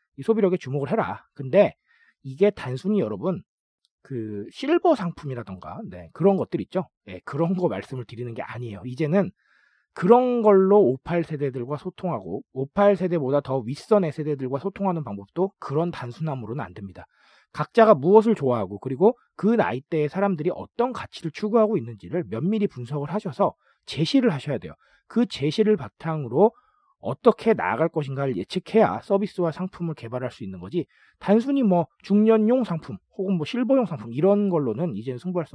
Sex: male